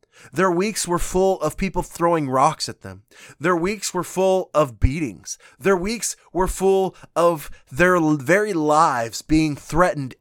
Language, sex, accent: English, male, American